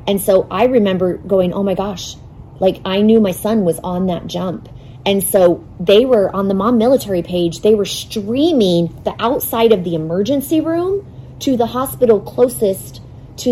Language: English